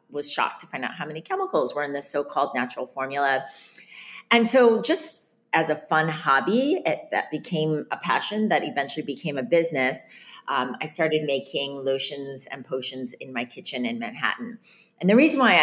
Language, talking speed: English, 175 wpm